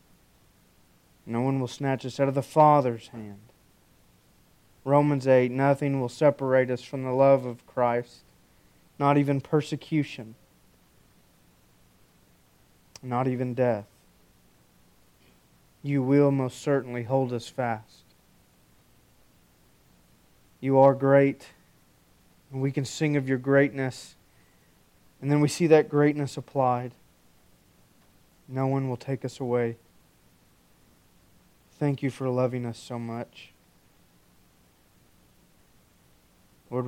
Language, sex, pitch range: English, male, 115-140 Hz